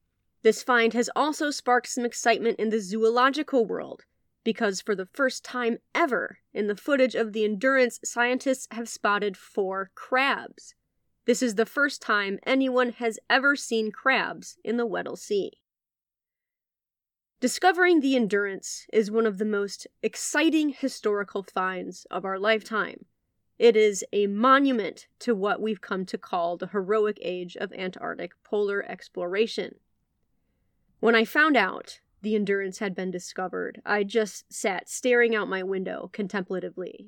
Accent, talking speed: American, 145 wpm